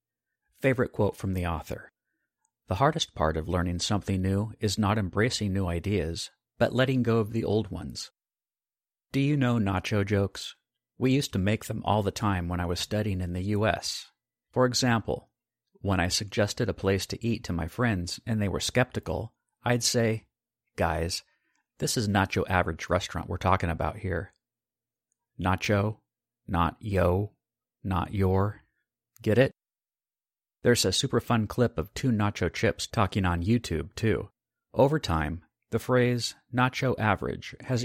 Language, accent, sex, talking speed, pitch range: English, American, male, 155 wpm, 90-115 Hz